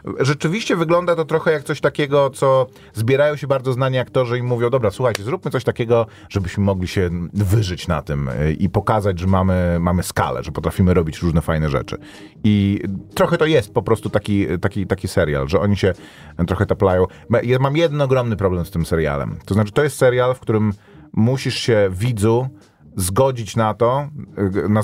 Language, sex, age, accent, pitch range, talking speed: Polish, male, 30-49, native, 90-110 Hz, 175 wpm